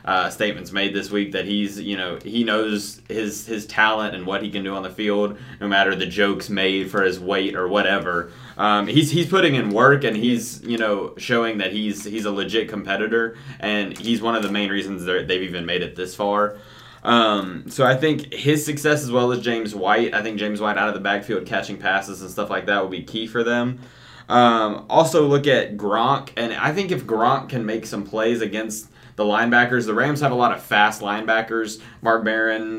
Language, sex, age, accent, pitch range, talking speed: English, male, 20-39, American, 100-115 Hz, 215 wpm